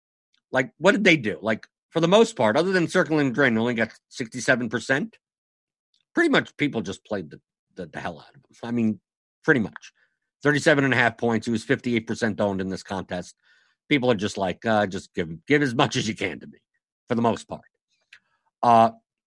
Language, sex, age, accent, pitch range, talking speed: English, male, 50-69, American, 120-170 Hz, 195 wpm